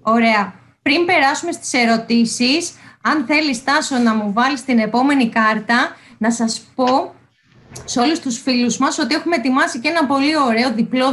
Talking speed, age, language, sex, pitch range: 160 wpm, 20-39, Greek, female, 230-290 Hz